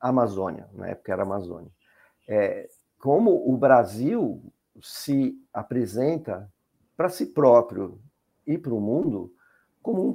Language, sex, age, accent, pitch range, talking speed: Portuguese, male, 50-69, Brazilian, 115-170 Hz, 130 wpm